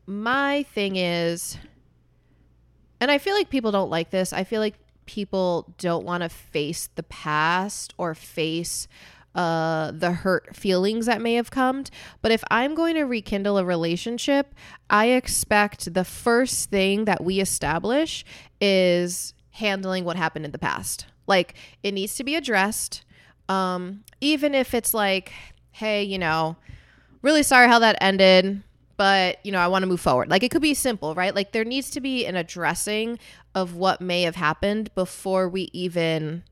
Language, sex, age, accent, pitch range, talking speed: English, female, 20-39, American, 170-225 Hz, 170 wpm